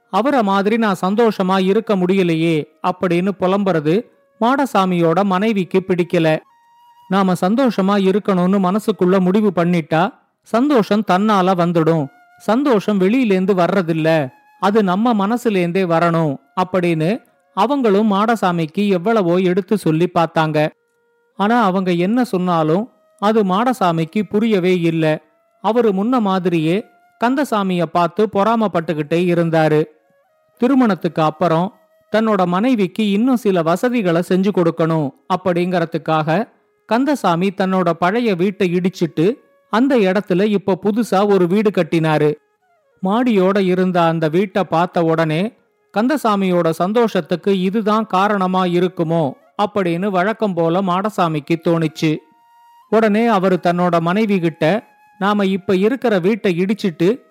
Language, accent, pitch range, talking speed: Tamil, native, 175-215 Hz, 100 wpm